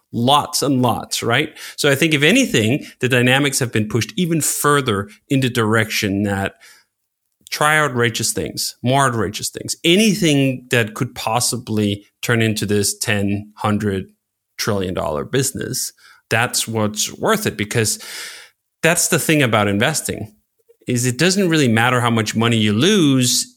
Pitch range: 105-145 Hz